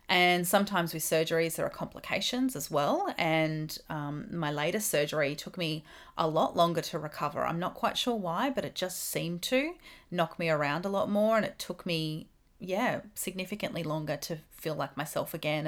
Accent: Australian